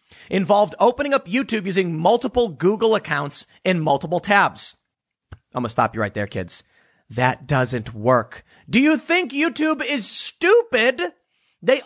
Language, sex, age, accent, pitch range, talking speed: English, male, 30-49, American, 155-240 Hz, 140 wpm